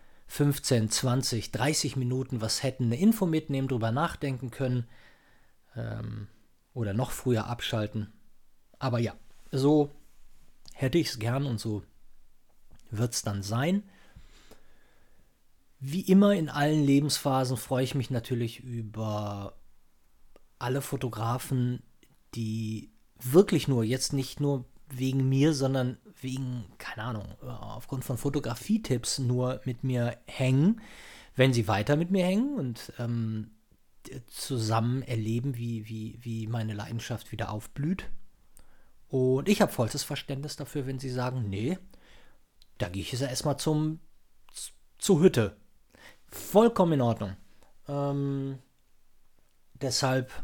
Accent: German